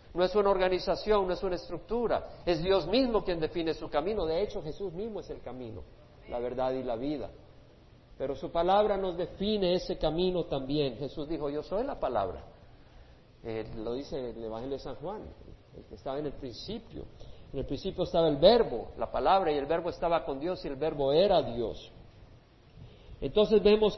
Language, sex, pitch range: Spanish, male, 160-210 Hz